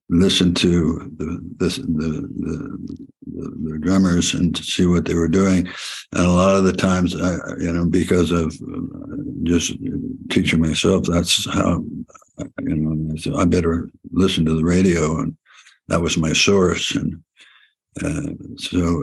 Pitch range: 85-90 Hz